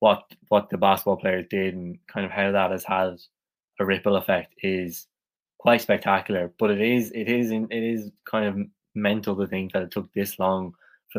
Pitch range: 95-115 Hz